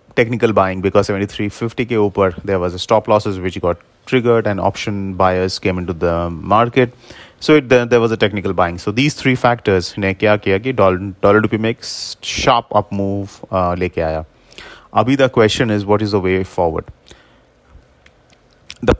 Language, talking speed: English, 170 wpm